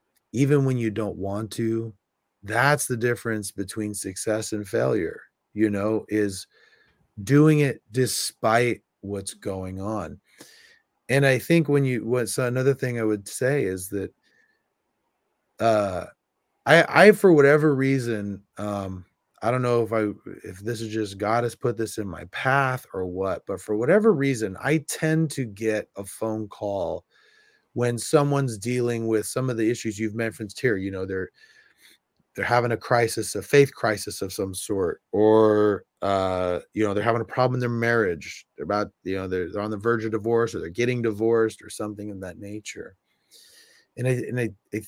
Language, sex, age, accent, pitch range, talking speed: English, male, 30-49, American, 105-130 Hz, 175 wpm